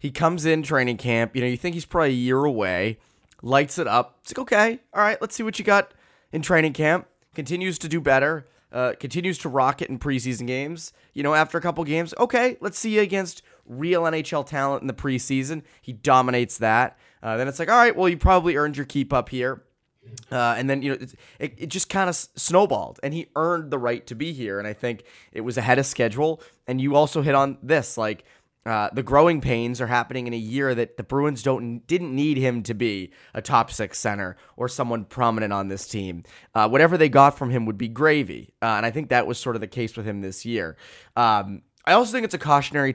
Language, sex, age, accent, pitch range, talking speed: English, male, 20-39, American, 120-160 Hz, 235 wpm